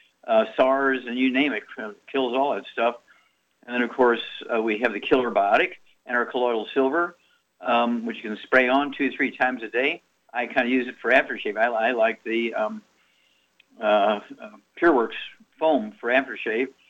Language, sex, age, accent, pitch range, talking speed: English, male, 50-69, American, 120-140 Hz, 190 wpm